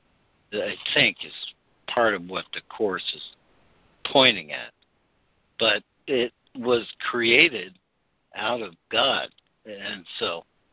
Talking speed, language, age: 110 wpm, English, 60-79